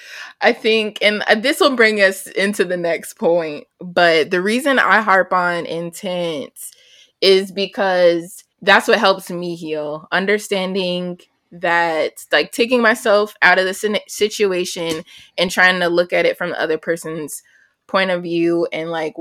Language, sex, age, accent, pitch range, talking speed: English, female, 20-39, American, 165-195 Hz, 155 wpm